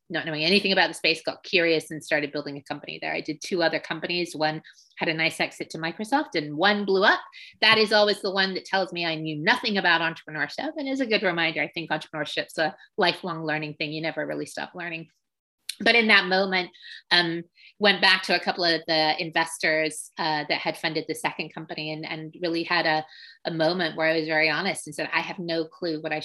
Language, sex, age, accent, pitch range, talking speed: English, female, 30-49, American, 160-190 Hz, 230 wpm